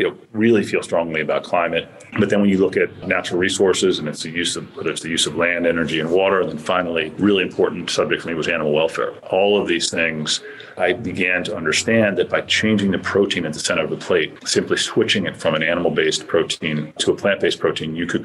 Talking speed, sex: 225 wpm, male